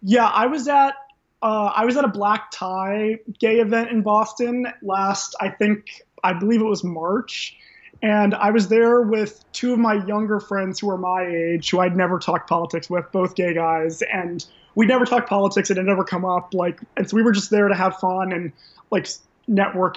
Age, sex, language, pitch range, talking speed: 20-39, male, English, 185-220 Hz, 205 wpm